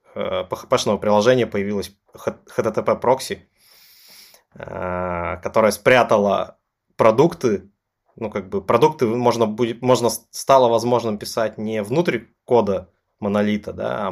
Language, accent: Russian, native